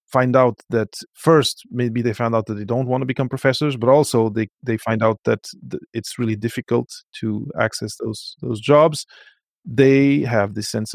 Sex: male